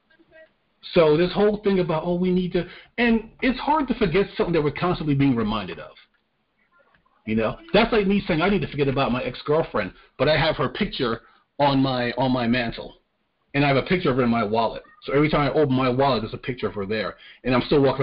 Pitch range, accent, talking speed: 130-190 Hz, American, 240 wpm